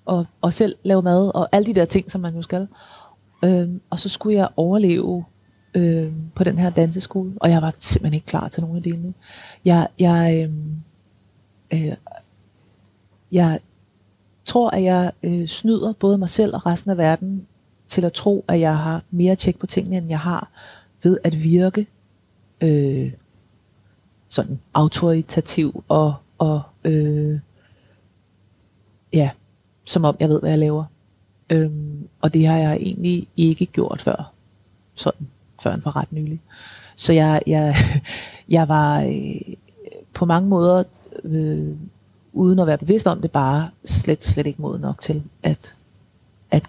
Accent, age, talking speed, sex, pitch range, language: native, 30-49, 160 wpm, female, 135-180 Hz, Danish